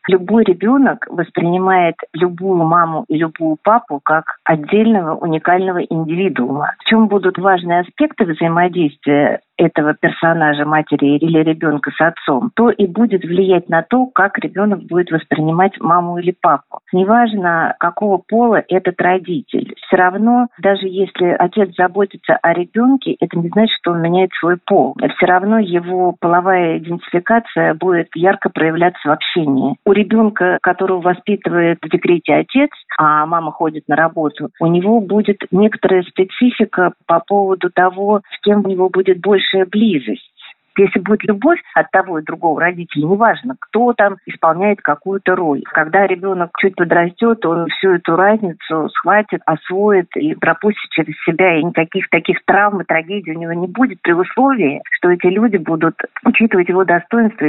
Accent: native